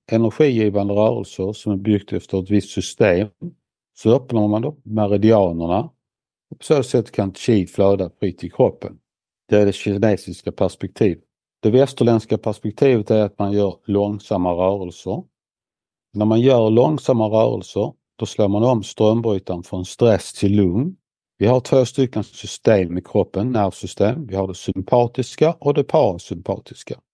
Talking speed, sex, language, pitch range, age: 145 wpm, male, Swedish, 95-120 Hz, 60-79